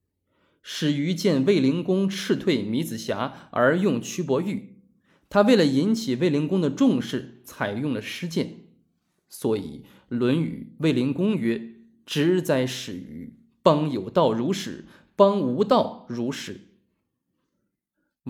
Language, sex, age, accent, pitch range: Chinese, male, 20-39, native, 140-205 Hz